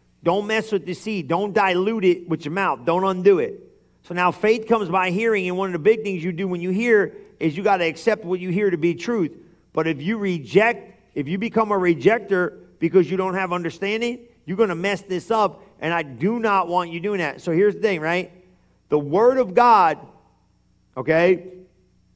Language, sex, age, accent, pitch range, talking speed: English, male, 50-69, American, 170-215 Hz, 215 wpm